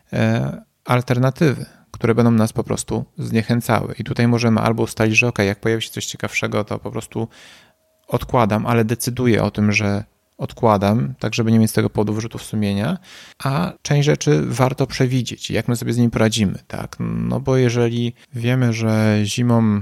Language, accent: Polish, native